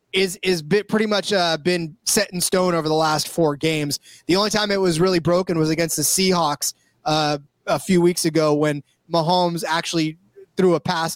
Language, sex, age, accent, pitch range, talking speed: English, male, 20-39, American, 160-190 Hz, 200 wpm